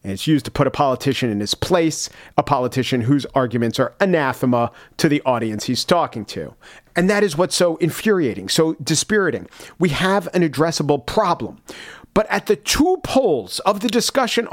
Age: 40-59